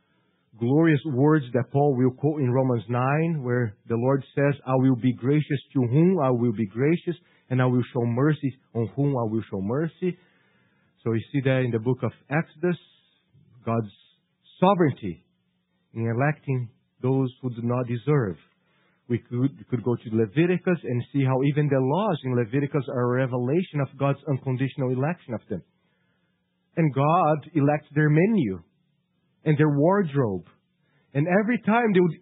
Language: English